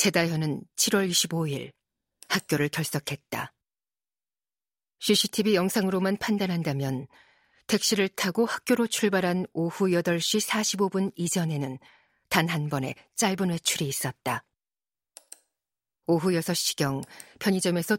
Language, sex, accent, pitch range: Korean, female, native, 150-190 Hz